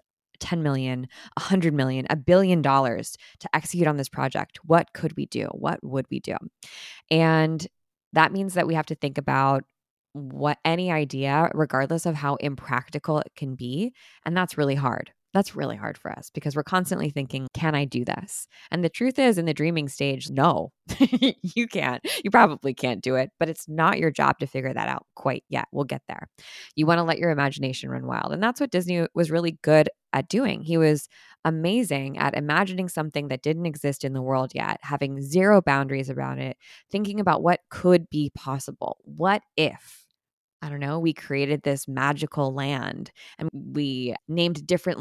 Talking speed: 190 wpm